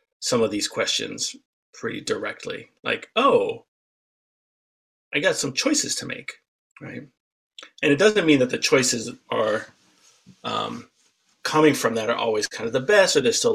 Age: 30-49